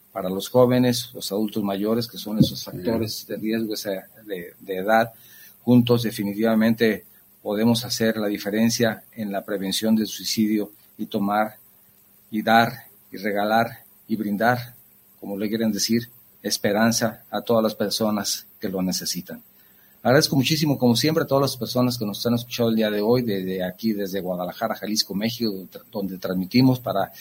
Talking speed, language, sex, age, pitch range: 160 wpm, Spanish, male, 40-59, 100-120 Hz